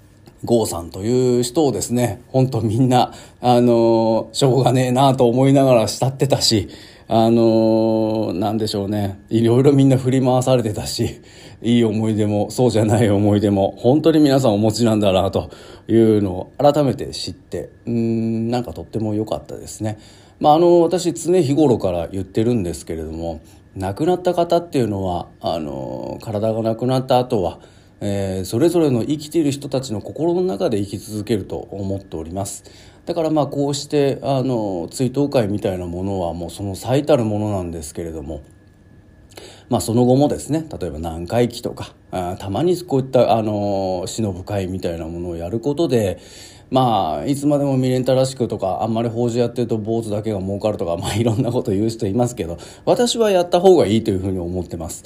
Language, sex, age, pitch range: Japanese, male, 40-59, 100-130 Hz